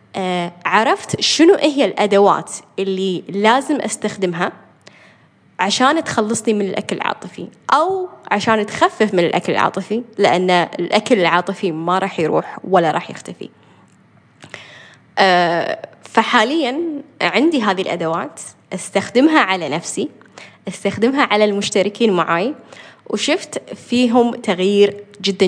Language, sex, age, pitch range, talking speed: Arabic, female, 10-29, 175-220 Hz, 100 wpm